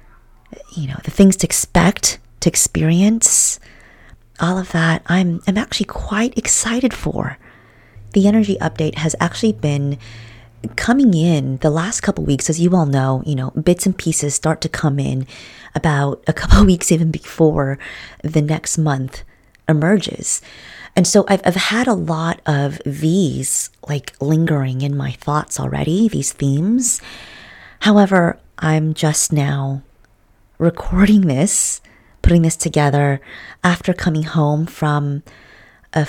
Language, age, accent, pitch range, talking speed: English, 30-49, American, 140-180 Hz, 140 wpm